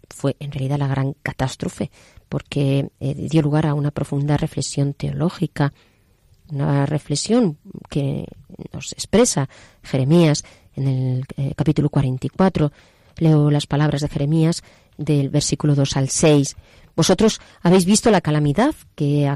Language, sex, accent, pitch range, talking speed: Spanish, female, Spanish, 135-160 Hz, 135 wpm